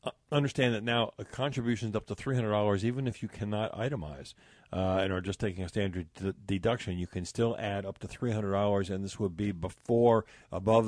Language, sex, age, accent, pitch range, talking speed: English, male, 50-69, American, 95-120 Hz, 205 wpm